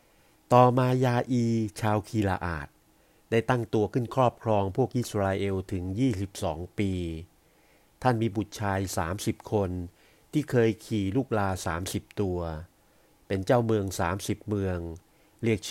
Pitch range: 95-120 Hz